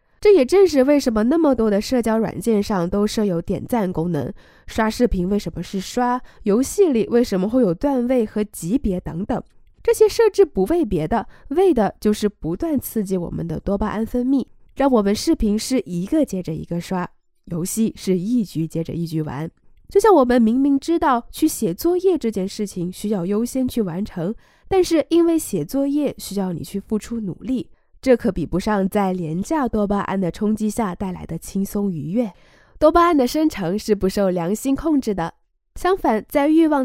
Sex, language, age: female, Chinese, 20-39